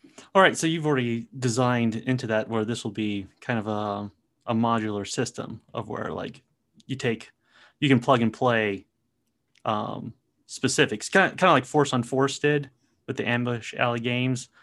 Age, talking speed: 30-49, 175 wpm